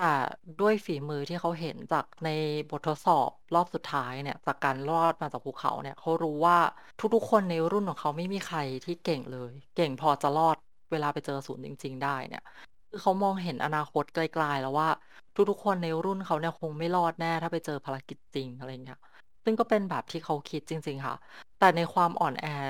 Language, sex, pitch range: Thai, female, 145-185 Hz